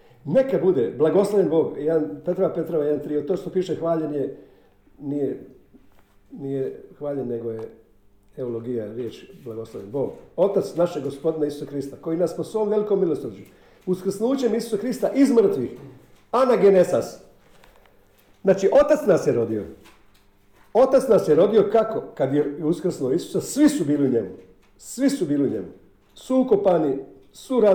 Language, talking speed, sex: Croatian, 145 wpm, male